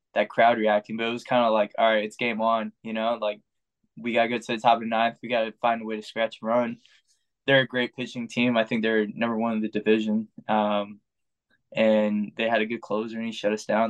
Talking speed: 255 wpm